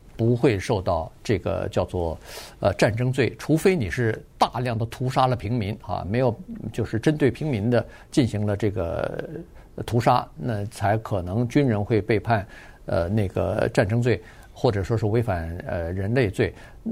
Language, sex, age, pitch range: Chinese, male, 50-69, 105-135 Hz